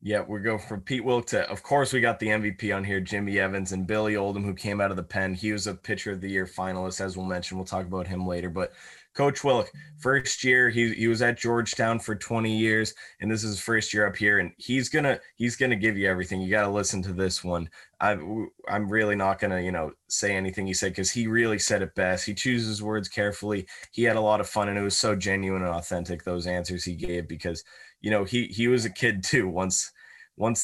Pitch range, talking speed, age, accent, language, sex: 95-110 Hz, 245 wpm, 20-39, American, English, male